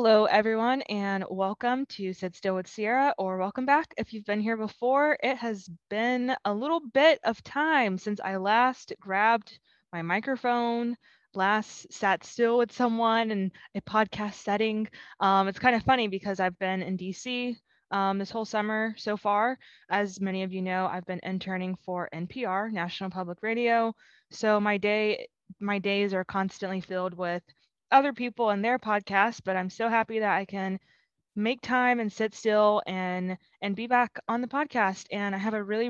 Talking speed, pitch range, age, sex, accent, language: 175 wpm, 185-230 Hz, 20-39, female, American, English